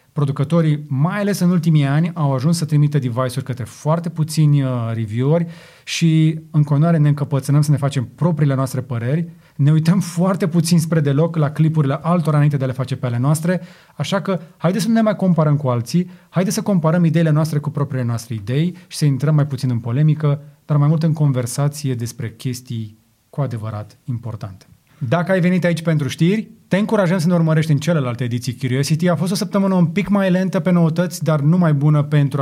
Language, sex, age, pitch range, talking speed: Romanian, male, 30-49, 130-170 Hz, 200 wpm